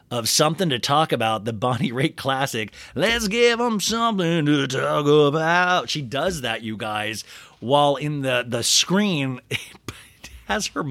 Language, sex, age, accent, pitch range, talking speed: English, male, 30-49, American, 125-180 Hz, 155 wpm